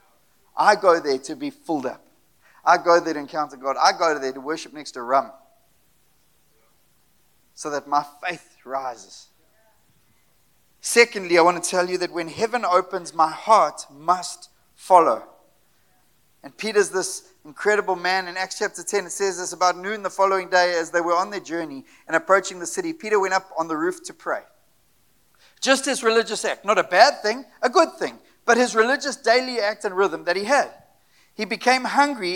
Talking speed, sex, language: 185 wpm, male, English